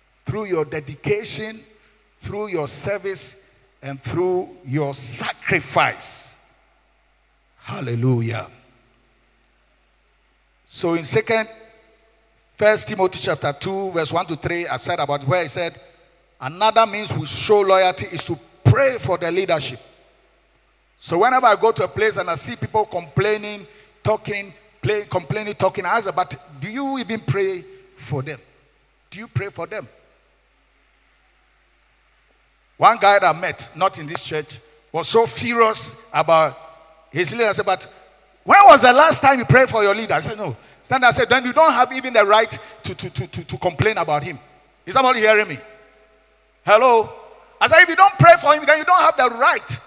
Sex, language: male, English